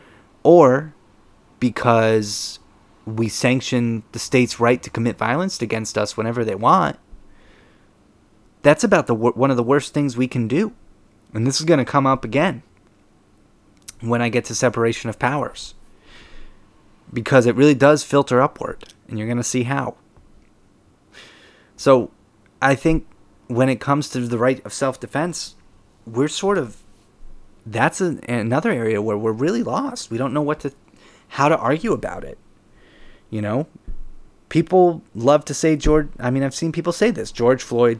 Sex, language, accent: male, English, American